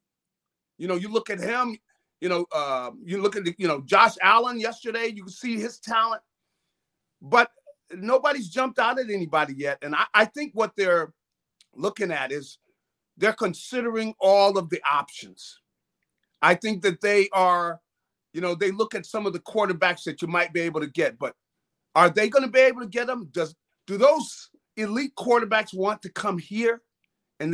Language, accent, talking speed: English, American, 185 wpm